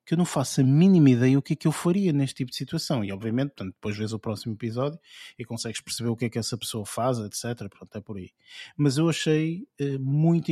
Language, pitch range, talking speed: Portuguese, 110-140 Hz, 245 wpm